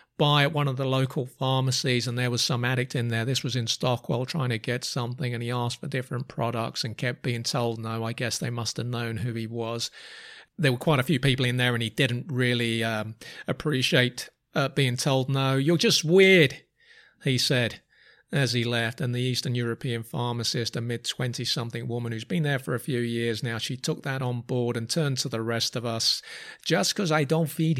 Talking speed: 215 wpm